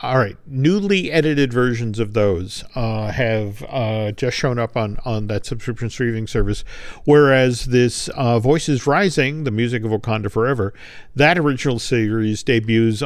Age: 50-69